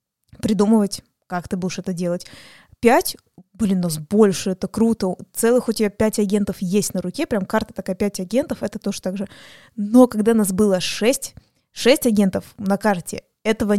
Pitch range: 190-220 Hz